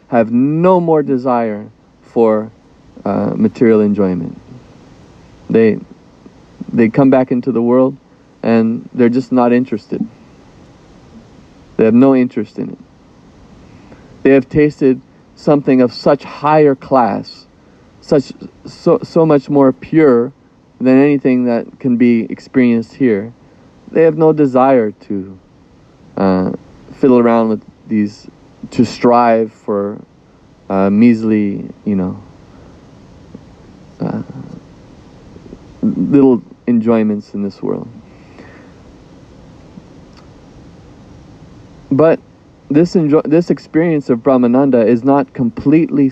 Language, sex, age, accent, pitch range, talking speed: English, male, 40-59, American, 115-140 Hz, 105 wpm